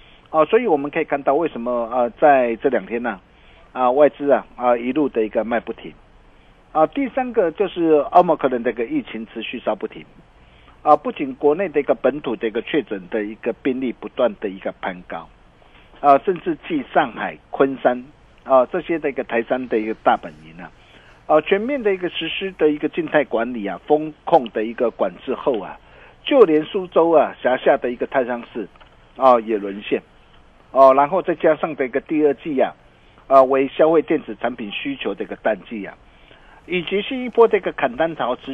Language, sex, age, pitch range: Chinese, male, 50-69, 120-175 Hz